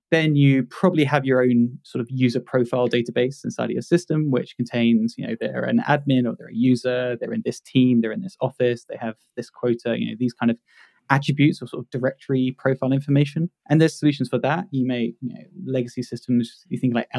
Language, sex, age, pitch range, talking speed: English, male, 20-39, 120-140 Hz, 225 wpm